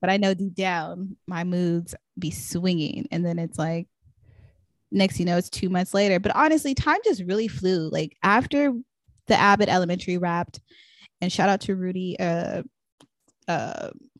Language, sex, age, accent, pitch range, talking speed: English, female, 20-39, American, 170-200 Hz, 170 wpm